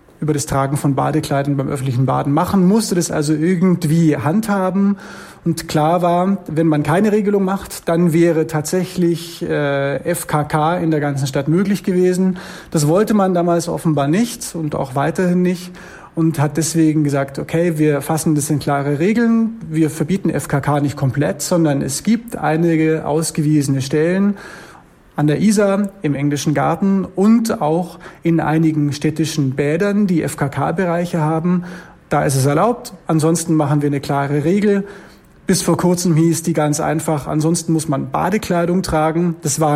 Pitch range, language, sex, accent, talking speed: 150-180 Hz, German, male, German, 155 wpm